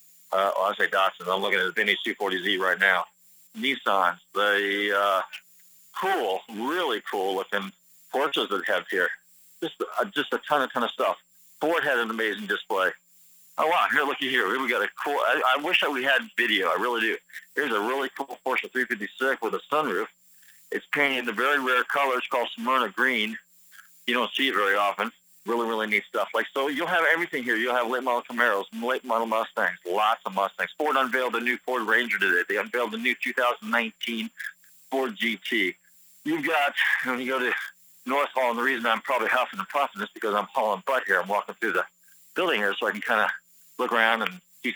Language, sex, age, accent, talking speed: English, male, 50-69, American, 205 wpm